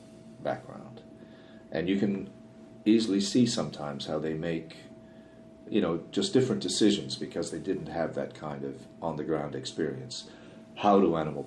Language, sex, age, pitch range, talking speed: English, male, 50-69, 75-90 Hz, 140 wpm